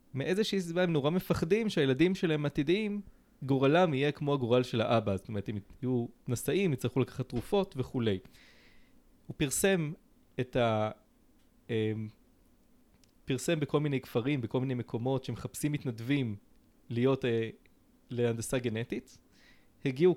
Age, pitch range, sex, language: 20-39, 125-170 Hz, male, Hebrew